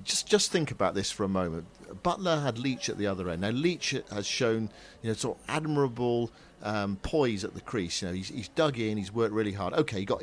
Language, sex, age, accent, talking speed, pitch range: English, male, 40-59, British, 245 wpm, 100-135 Hz